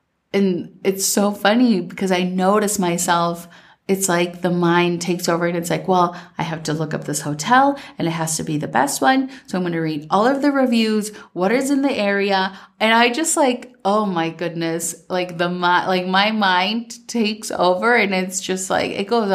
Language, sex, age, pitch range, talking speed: English, female, 30-49, 170-210 Hz, 210 wpm